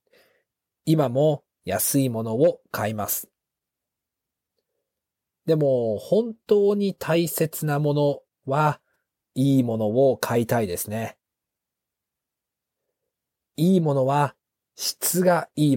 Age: 40-59